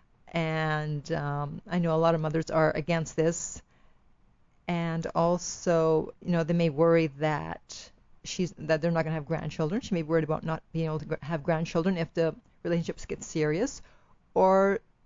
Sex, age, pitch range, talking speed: female, 40-59, 160-190 Hz, 175 wpm